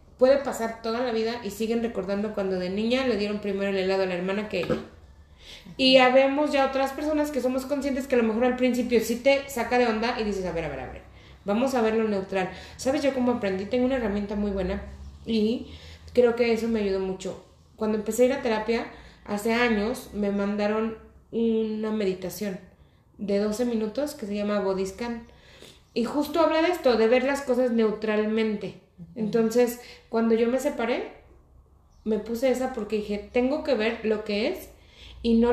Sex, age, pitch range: female, 30-49, 205-250 Hz